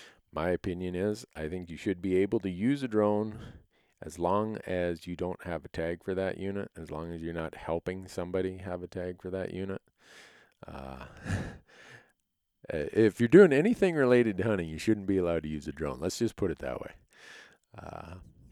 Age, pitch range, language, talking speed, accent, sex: 40-59, 80-105 Hz, English, 195 wpm, American, male